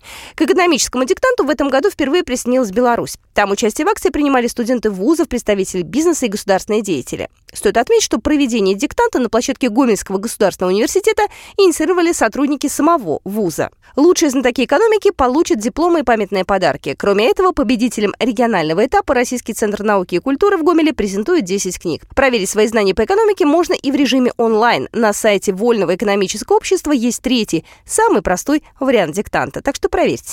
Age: 20-39